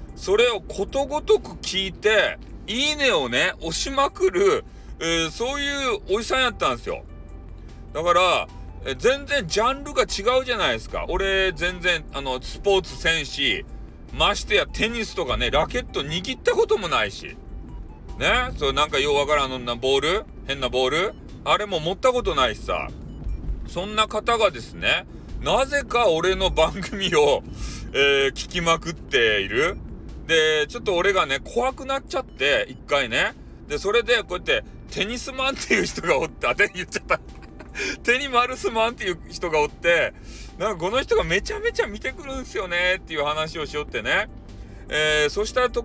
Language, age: Japanese, 40-59